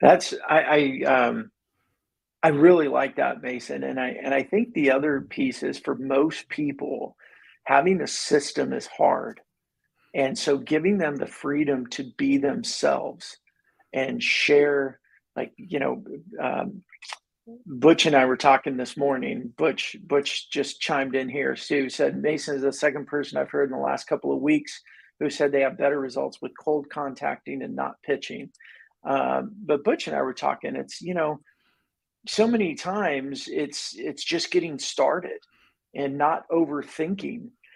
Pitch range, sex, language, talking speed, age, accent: 140-200 Hz, male, English, 160 wpm, 50-69, American